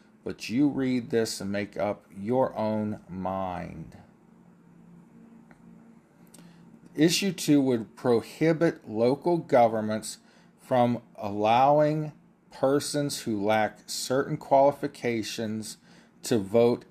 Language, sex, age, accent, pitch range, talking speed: English, male, 40-59, American, 115-170 Hz, 90 wpm